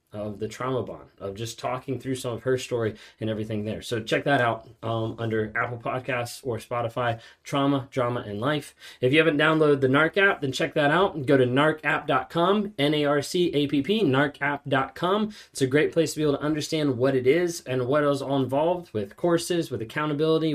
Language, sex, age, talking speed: English, male, 20-39, 195 wpm